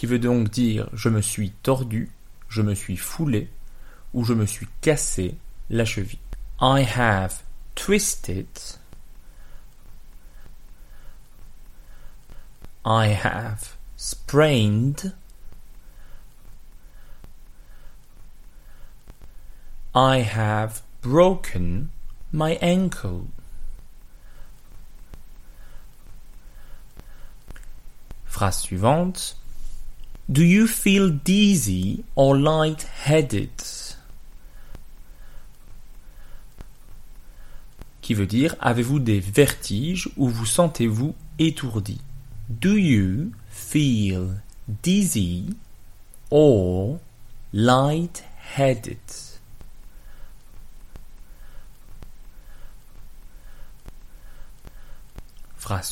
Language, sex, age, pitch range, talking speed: French, male, 30-49, 105-150 Hz, 60 wpm